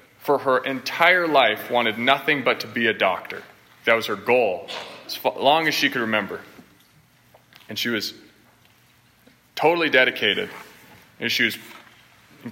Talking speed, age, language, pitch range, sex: 145 wpm, 20-39, English, 110-140 Hz, male